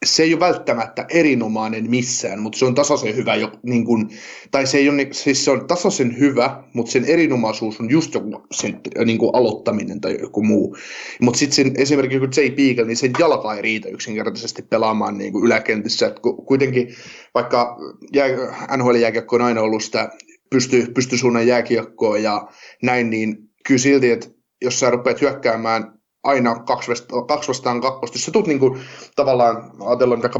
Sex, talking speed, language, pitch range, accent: male, 175 wpm, Finnish, 115-140 Hz, native